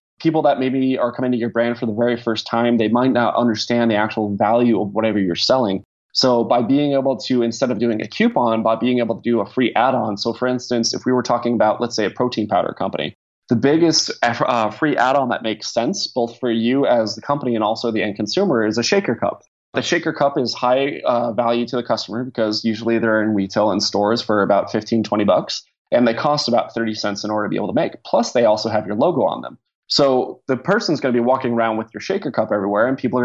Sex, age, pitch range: male, 20-39, 110-125 Hz